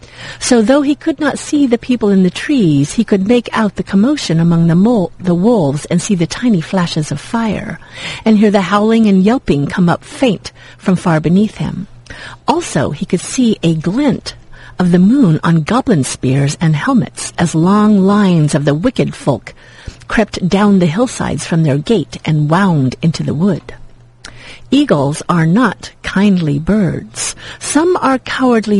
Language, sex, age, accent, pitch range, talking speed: English, female, 50-69, American, 160-225 Hz, 175 wpm